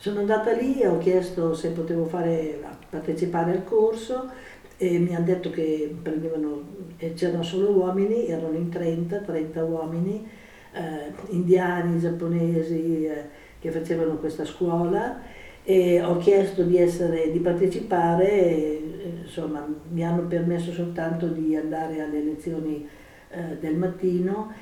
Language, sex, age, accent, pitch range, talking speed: Italian, female, 50-69, native, 160-185 Hz, 130 wpm